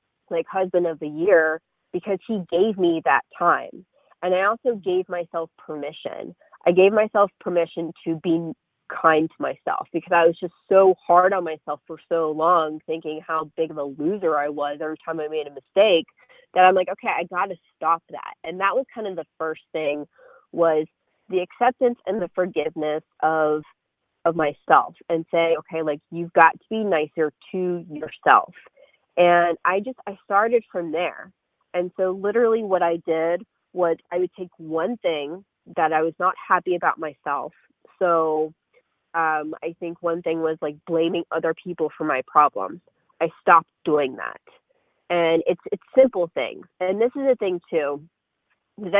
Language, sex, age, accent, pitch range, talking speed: English, female, 30-49, American, 160-190 Hz, 175 wpm